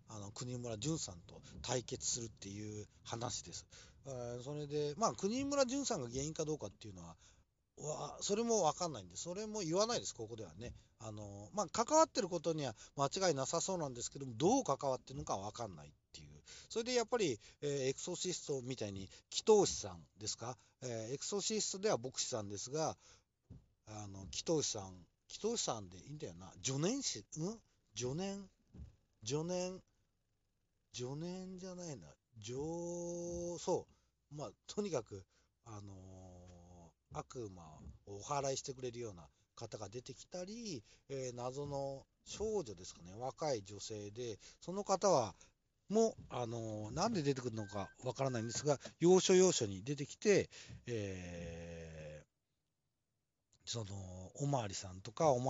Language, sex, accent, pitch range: Japanese, male, native, 105-165 Hz